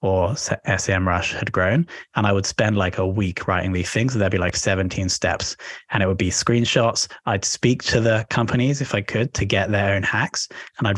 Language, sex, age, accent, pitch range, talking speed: English, male, 20-39, British, 95-115 Hz, 225 wpm